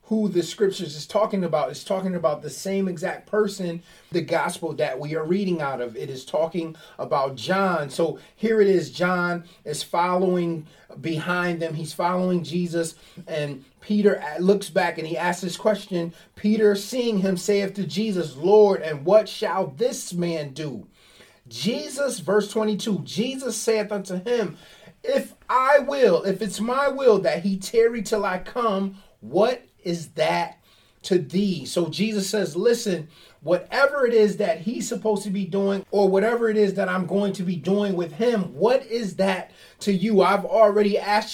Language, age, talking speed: English, 30-49, 170 wpm